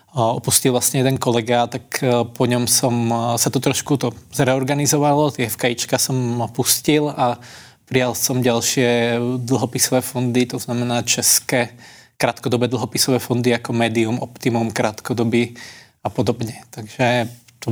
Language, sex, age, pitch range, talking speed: Czech, male, 20-39, 120-130 Hz, 120 wpm